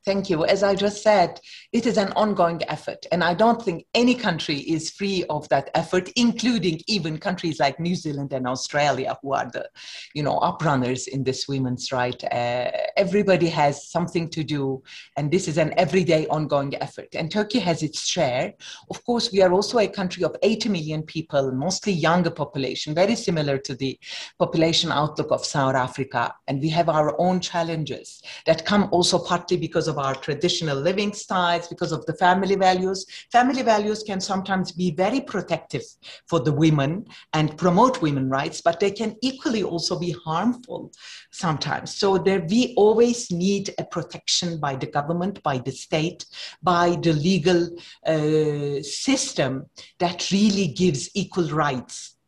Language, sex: English, female